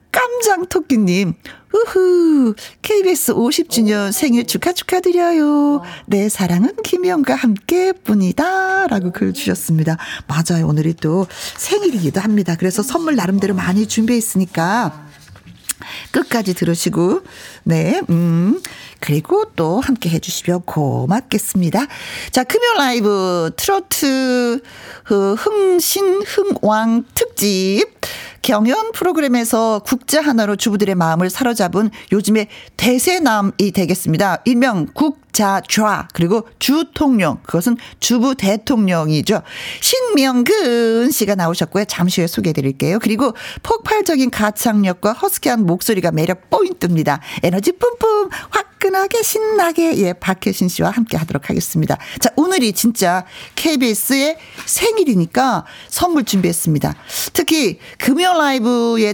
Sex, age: female, 40-59